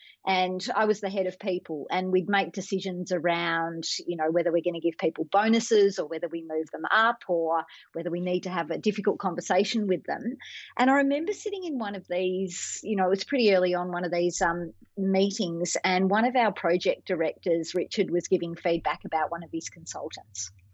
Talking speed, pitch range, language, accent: 210 wpm, 175-210 Hz, English, Australian